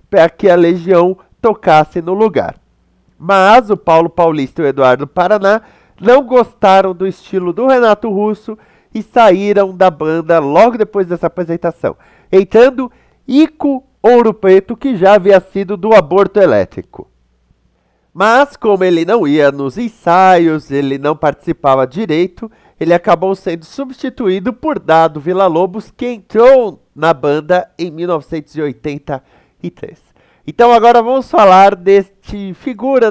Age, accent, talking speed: 50-69, Brazilian, 130 wpm